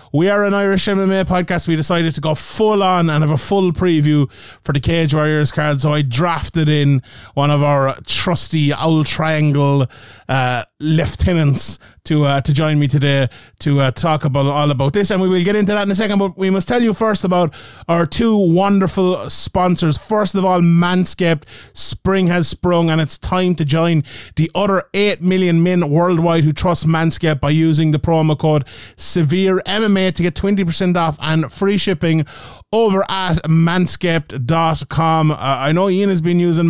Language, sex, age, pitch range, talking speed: English, male, 30-49, 145-185 Hz, 185 wpm